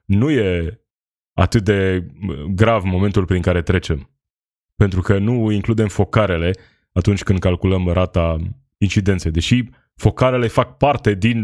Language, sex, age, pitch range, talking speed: Romanian, male, 20-39, 95-120 Hz, 125 wpm